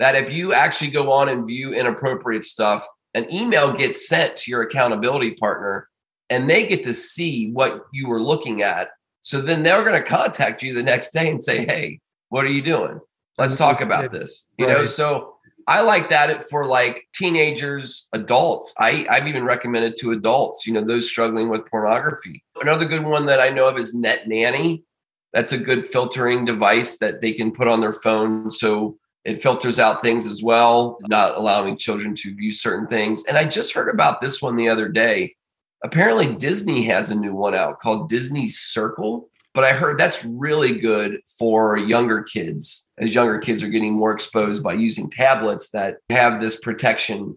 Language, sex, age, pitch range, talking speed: English, male, 30-49, 110-140 Hz, 190 wpm